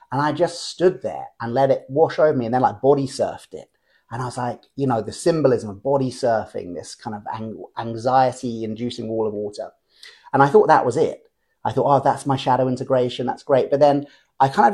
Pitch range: 125-180 Hz